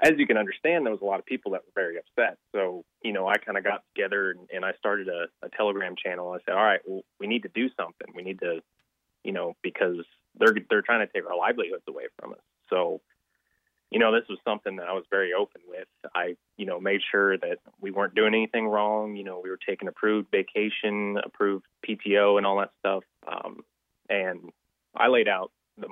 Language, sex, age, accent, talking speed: English, male, 20-39, American, 225 wpm